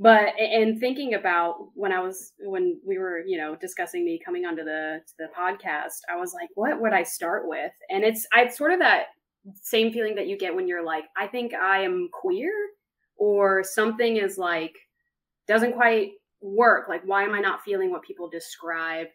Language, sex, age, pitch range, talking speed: English, female, 20-39, 185-285 Hz, 195 wpm